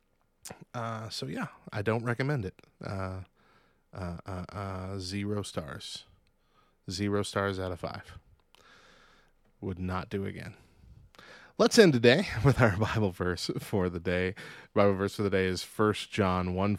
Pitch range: 95-120 Hz